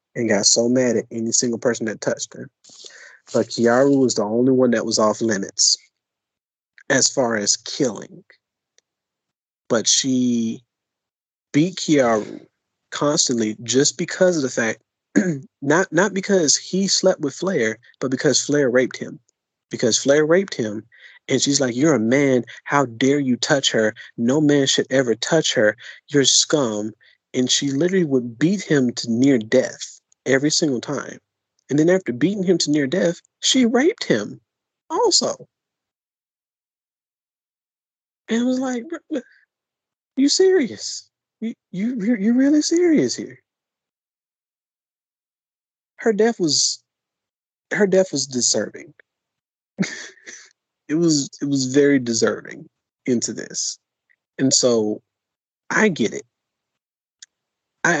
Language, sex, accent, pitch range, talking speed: English, male, American, 120-185 Hz, 135 wpm